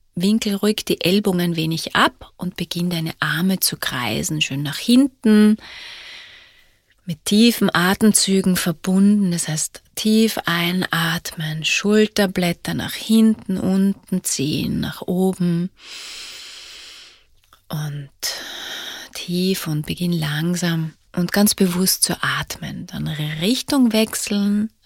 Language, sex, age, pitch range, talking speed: German, female, 30-49, 170-215 Hz, 105 wpm